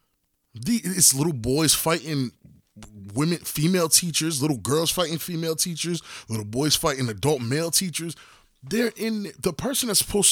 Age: 20-39